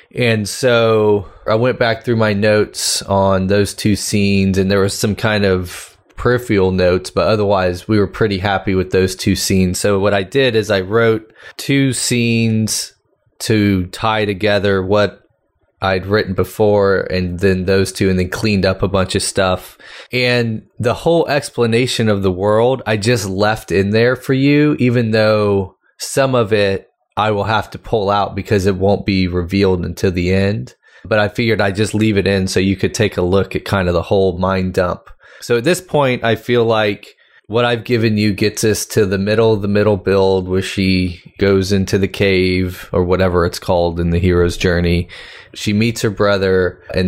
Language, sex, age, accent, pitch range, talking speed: English, male, 20-39, American, 95-110 Hz, 190 wpm